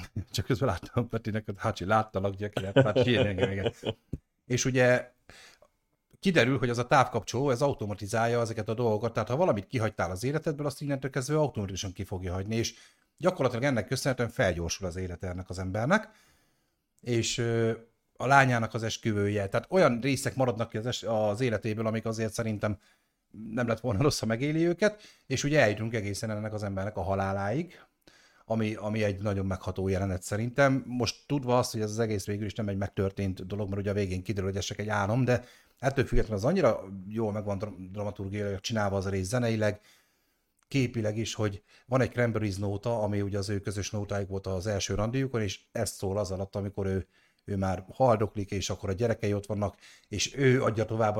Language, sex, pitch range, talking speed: Hungarian, male, 100-125 Hz, 180 wpm